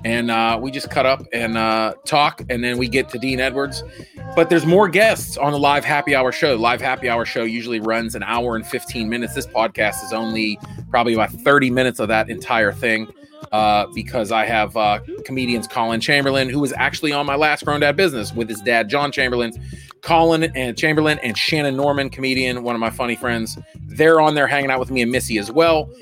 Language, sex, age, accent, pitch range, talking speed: English, male, 30-49, American, 115-150 Hz, 215 wpm